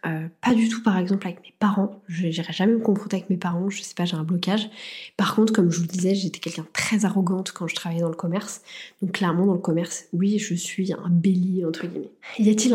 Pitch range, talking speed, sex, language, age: 175-210 Hz, 260 wpm, female, French, 20-39